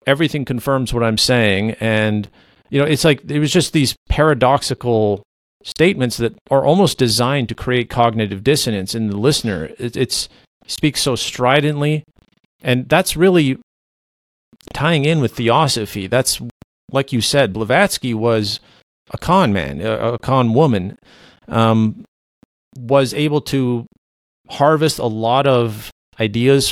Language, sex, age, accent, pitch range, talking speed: English, male, 40-59, American, 105-130 Hz, 135 wpm